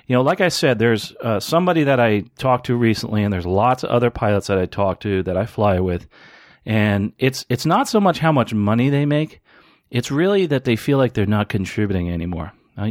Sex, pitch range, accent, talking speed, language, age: male, 100-135 Hz, American, 230 wpm, English, 40-59